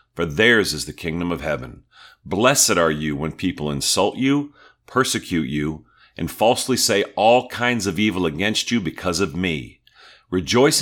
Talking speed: 160 wpm